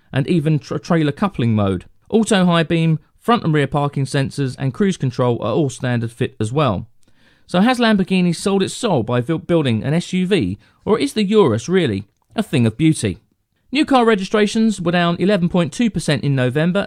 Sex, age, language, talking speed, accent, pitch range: male, 40-59, English, 175 wpm, British, 130-175 Hz